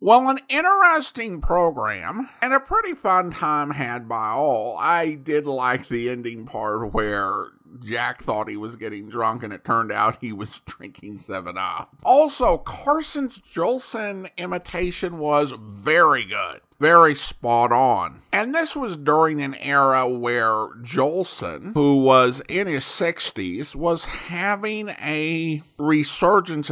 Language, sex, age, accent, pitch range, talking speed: English, male, 50-69, American, 125-190 Hz, 135 wpm